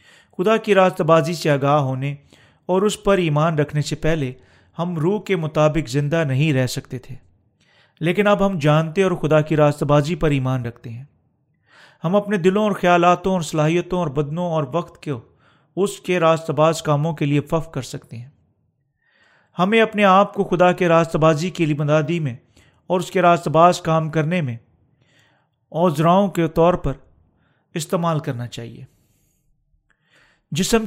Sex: male